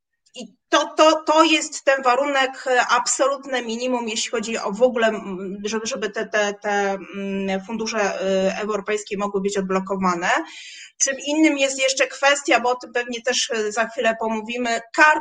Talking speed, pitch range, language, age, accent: 150 wpm, 210-275 Hz, Polish, 30-49, native